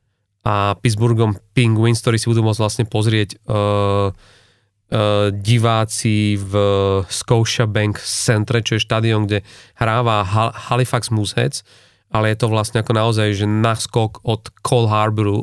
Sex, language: male, Slovak